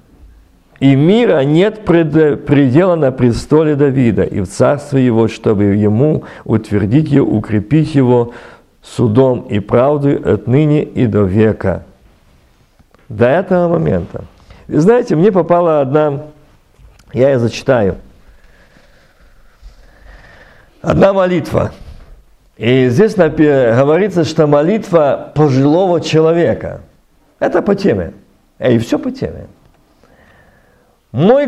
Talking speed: 100 wpm